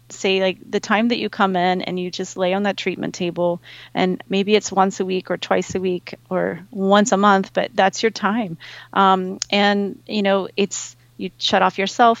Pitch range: 185-210 Hz